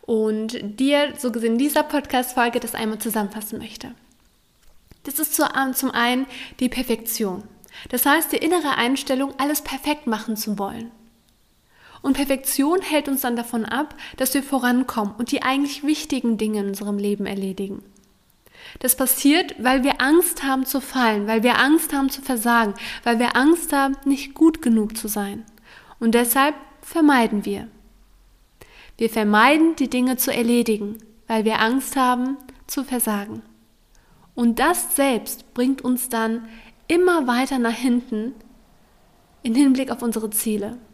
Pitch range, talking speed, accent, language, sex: 225-275 Hz, 145 wpm, German, German, female